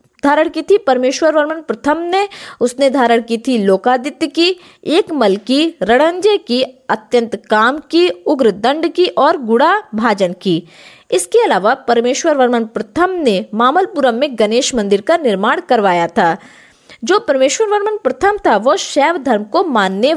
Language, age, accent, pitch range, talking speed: Hindi, 20-39, native, 225-340 Hz, 145 wpm